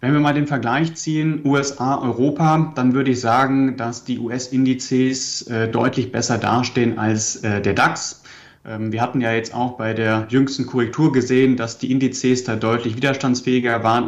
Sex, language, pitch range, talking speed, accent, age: male, German, 120-140 Hz, 170 wpm, German, 30-49